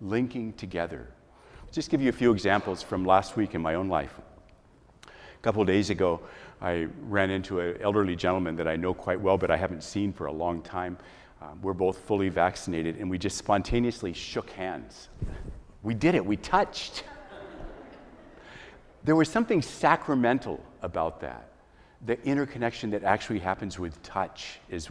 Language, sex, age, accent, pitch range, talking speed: English, male, 50-69, American, 85-120 Hz, 165 wpm